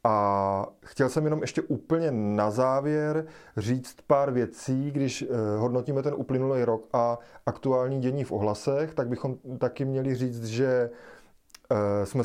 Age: 30-49